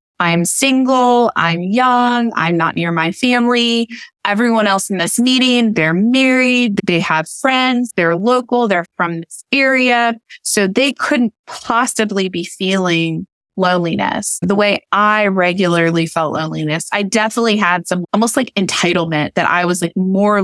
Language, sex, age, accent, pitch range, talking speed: English, female, 20-39, American, 180-240 Hz, 145 wpm